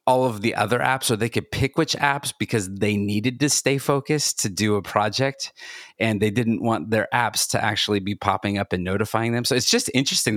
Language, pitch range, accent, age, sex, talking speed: English, 100-120 Hz, American, 30-49, male, 225 wpm